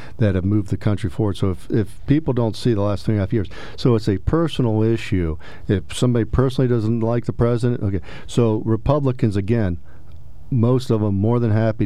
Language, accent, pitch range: English, American, 95-115 Hz